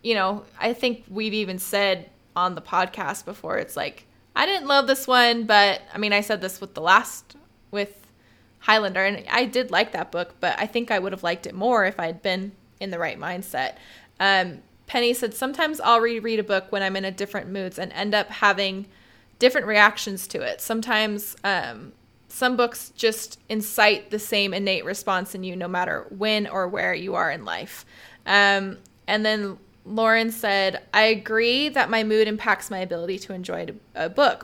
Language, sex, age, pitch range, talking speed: English, female, 20-39, 190-225 Hz, 195 wpm